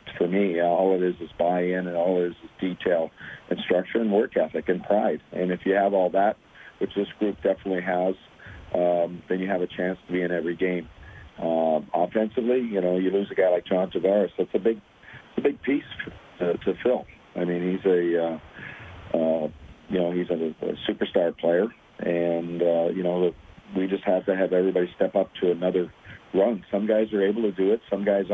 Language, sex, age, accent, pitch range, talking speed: English, male, 50-69, American, 85-100 Hz, 210 wpm